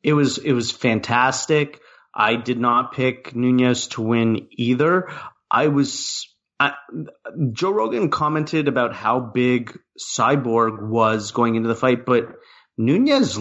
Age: 30-49